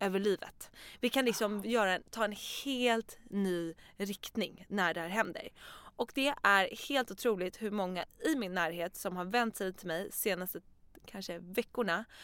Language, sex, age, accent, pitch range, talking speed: Swedish, female, 20-39, native, 175-225 Hz, 170 wpm